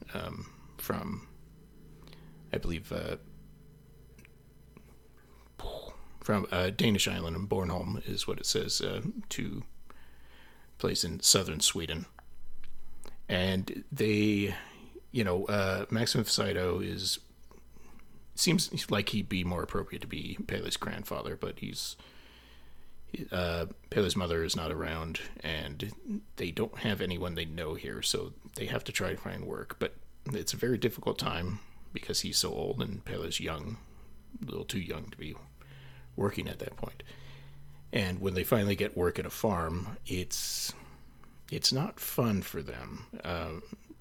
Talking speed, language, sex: 140 wpm, English, male